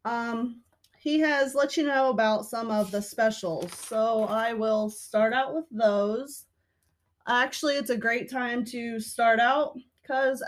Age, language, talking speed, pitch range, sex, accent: 20-39, English, 155 wpm, 210-260 Hz, female, American